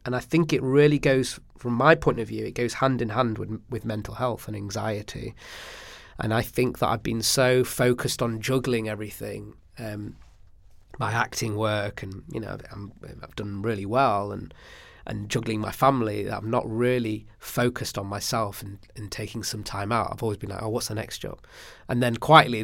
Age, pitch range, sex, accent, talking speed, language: 20-39, 105-130 Hz, male, British, 200 wpm, English